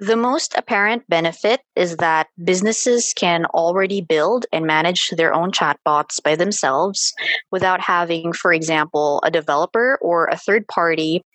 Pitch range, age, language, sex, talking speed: 160-195 Hz, 20-39, English, female, 145 wpm